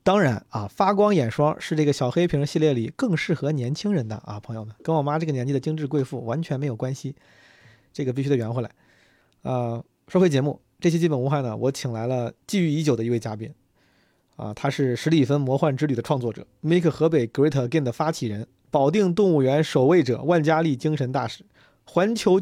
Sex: male